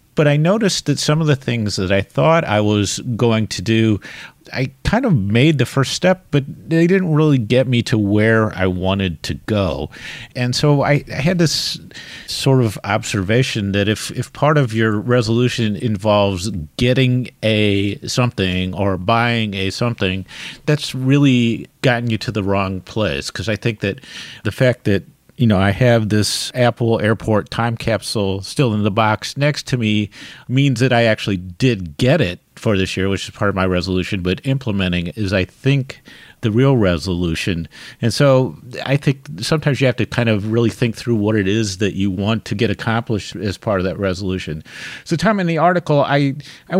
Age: 50-69